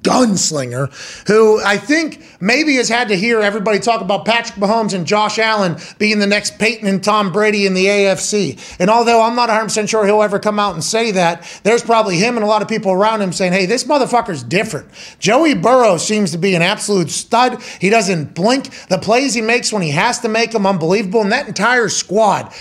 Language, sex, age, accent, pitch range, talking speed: English, male, 30-49, American, 195-235 Hz, 215 wpm